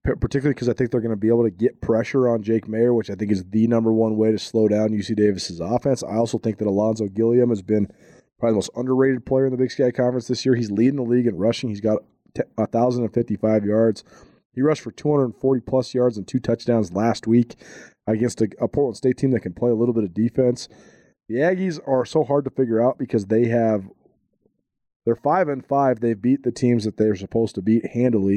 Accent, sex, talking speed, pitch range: American, male, 235 wpm, 110-130 Hz